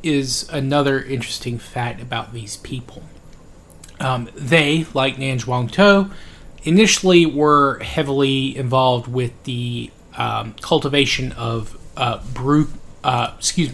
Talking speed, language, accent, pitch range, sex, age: 105 wpm, English, American, 115-140 Hz, male, 30-49